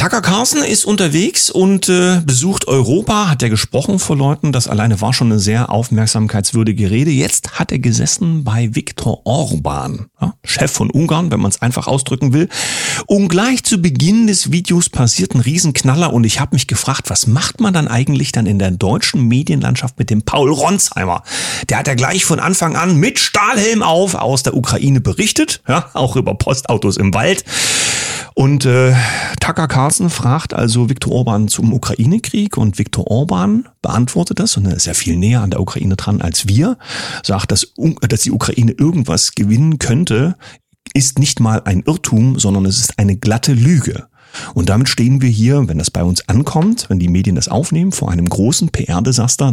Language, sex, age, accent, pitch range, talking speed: German, male, 40-59, German, 110-160 Hz, 185 wpm